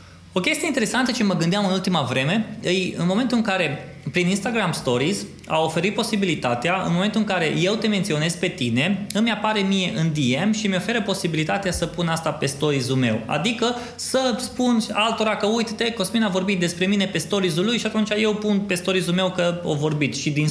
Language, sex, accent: Romanian, male, native